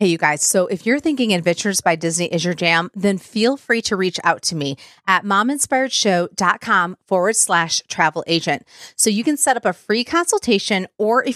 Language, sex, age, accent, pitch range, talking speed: English, female, 30-49, American, 185-240 Hz, 195 wpm